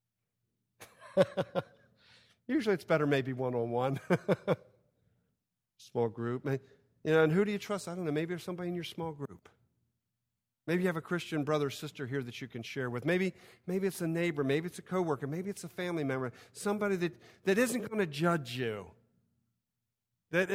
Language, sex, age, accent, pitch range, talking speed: English, male, 50-69, American, 120-175 Hz, 170 wpm